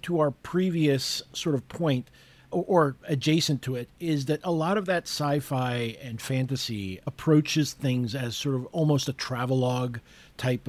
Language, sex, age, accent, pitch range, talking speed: English, male, 40-59, American, 120-150 Hz, 155 wpm